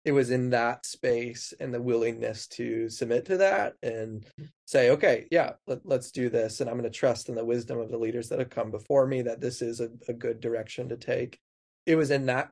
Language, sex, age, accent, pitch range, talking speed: English, male, 20-39, American, 120-135 Hz, 230 wpm